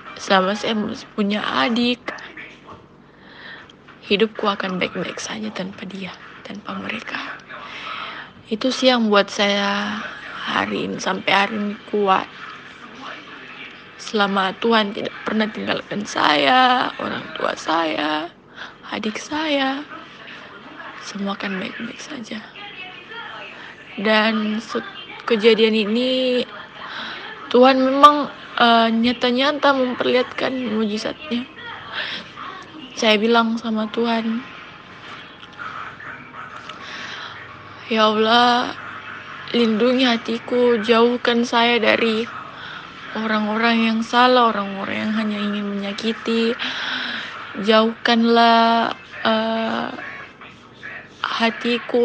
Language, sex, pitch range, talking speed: Indonesian, female, 215-245 Hz, 80 wpm